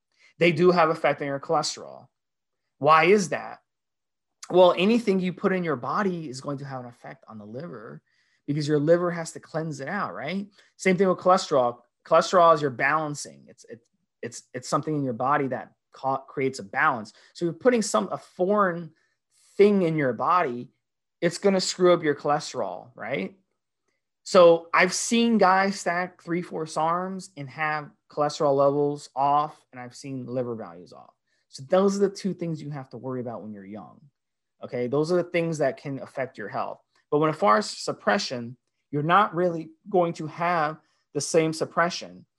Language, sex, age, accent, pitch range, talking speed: English, male, 30-49, American, 135-175 Hz, 190 wpm